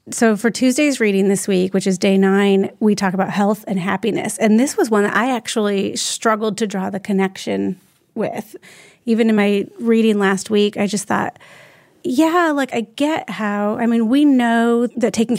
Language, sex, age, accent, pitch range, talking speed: English, female, 30-49, American, 195-235 Hz, 190 wpm